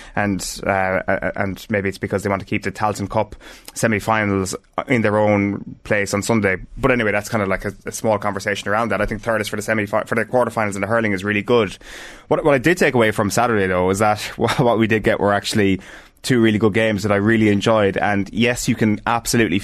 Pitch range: 100-115 Hz